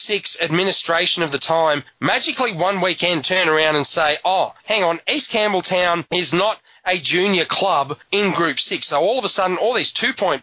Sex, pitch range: male, 160-200 Hz